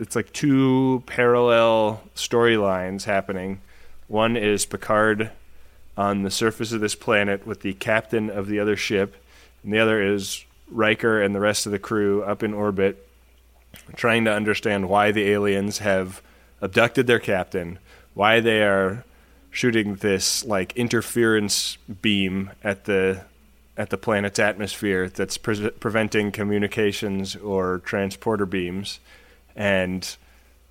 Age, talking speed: 20-39, 135 wpm